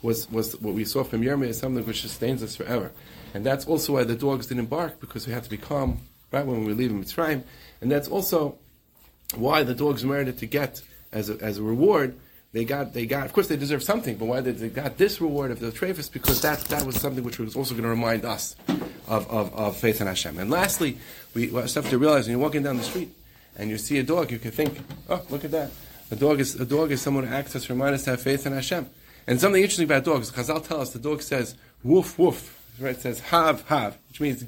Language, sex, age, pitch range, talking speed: English, male, 40-59, 115-150 Hz, 260 wpm